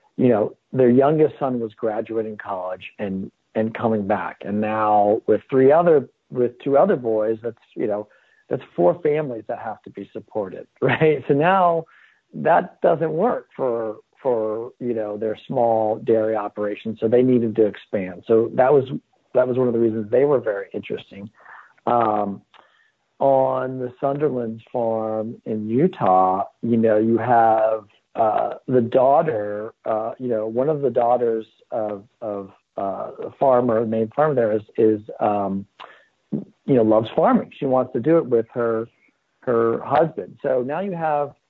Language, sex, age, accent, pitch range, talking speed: English, male, 50-69, American, 105-130 Hz, 165 wpm